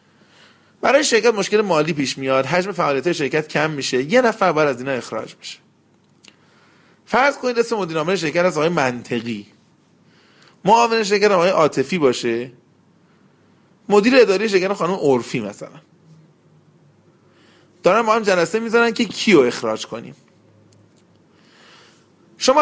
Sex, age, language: male, 30-49, Persian